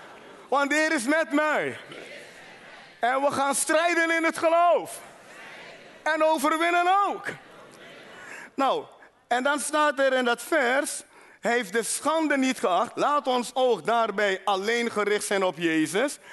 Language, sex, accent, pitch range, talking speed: Dutch, male, Dutch, 220-305 Hz, 140 wpm